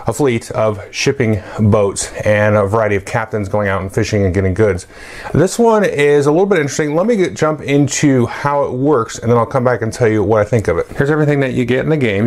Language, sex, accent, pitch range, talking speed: English, male, American, 100-120 Hz, 255 wpm